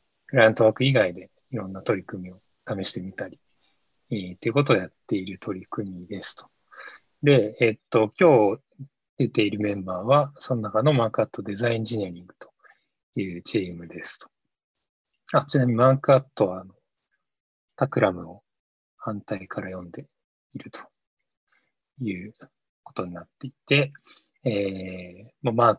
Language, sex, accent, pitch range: English, male, Japanese, 95-130 Hz